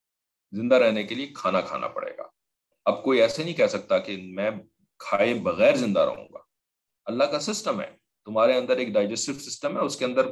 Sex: male